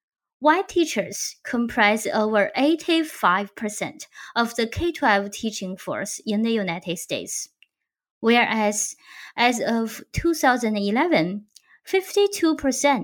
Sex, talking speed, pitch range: female, 85 wpm, 205-300 Hz